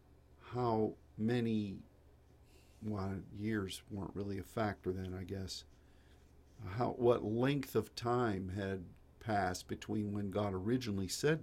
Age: 50-69